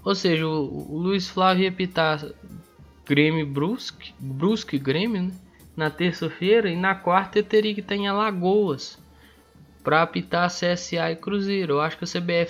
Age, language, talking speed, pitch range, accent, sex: 10-29, Portuguese, 155 wpm, 130-170 Hz, Brazilian, male